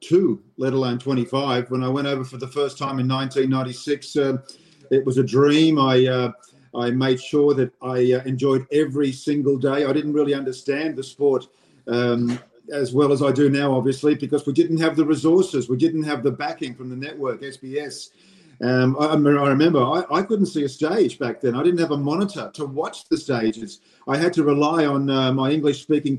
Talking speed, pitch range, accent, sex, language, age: 205 wpm, 130-155 Hz, Australian, male, English, 50-69